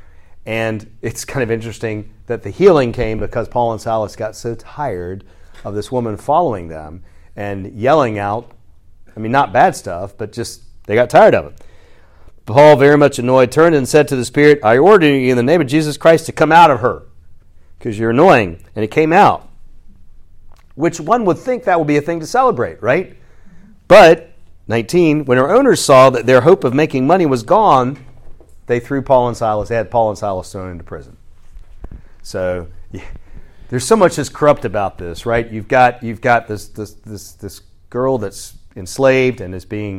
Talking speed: 195 wpm